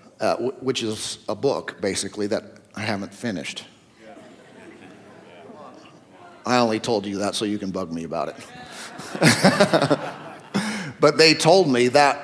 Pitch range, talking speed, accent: 115-135 Hz, 130 wpm, American